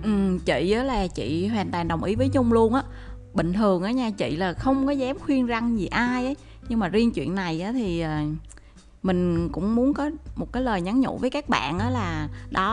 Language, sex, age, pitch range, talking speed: Vietnamese, female, 20-39, 185-260 Hz, 220 wpm